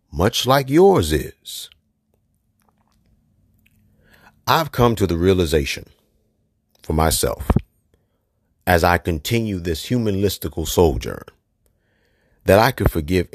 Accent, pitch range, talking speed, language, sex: American, 85-110 Hz, 95 wpm, English, male